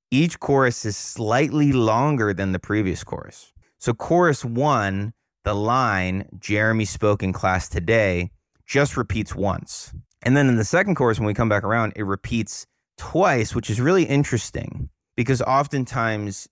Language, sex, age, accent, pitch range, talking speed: English, male, 30-49, American, 95-120 Hz, 155 wpm